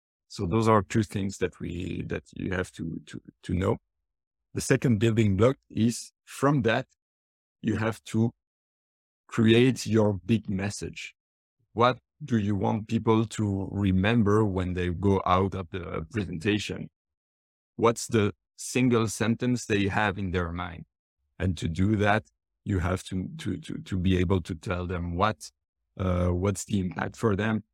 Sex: male